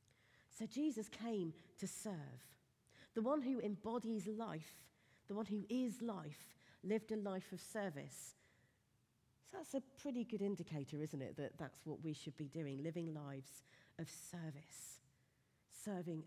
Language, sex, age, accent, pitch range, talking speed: English, female, 40-59, British, 130-195 Hz, 150 wpm